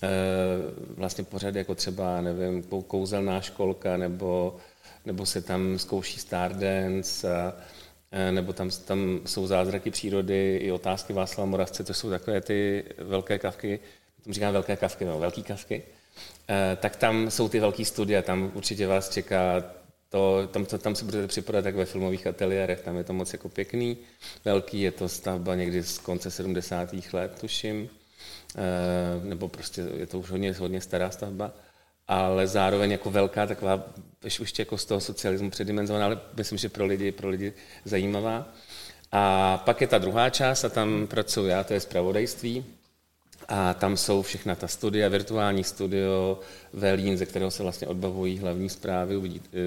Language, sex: Czech, male